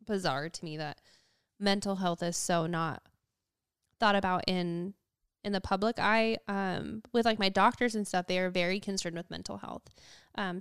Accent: American